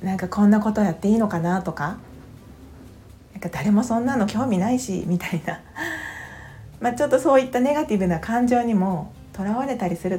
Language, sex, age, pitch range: Japanese, female, 40-59, 160-225 Hz